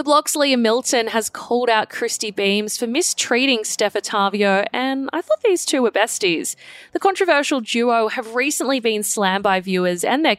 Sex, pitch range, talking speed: female, 195-285 Hz, 180 wpm